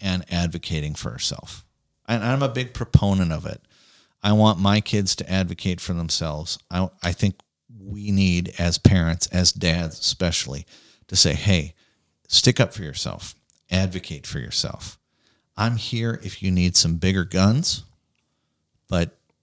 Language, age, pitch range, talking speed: English, 40-59, 85-105 Hz, 150 wpm